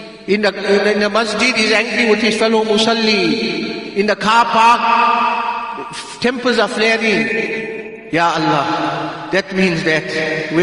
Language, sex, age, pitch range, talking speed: English, male, 50-69, 150-210 Hz, 135 wpm